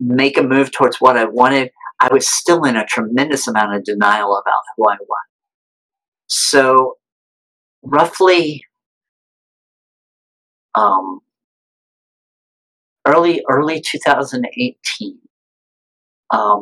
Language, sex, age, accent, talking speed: English, male, 50-69, American, 95 wpm